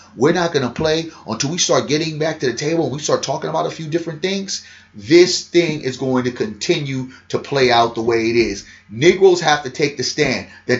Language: English